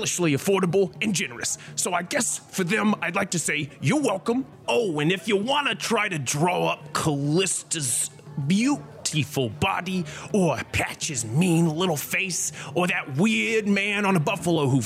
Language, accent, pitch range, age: English, American, 155-210 Hz, 30-49